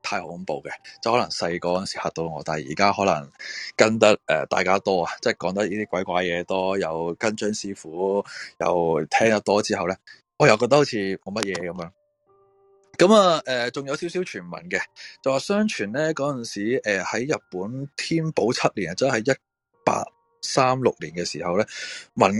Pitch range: 95-145 Hz